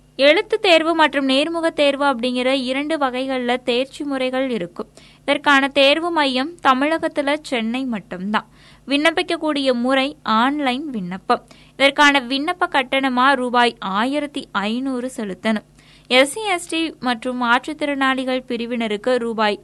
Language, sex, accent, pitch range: Tamil, female, native, 240-300 Hz